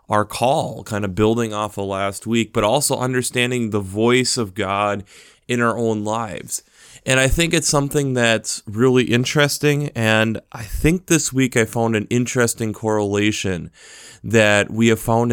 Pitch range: 105-125 Hz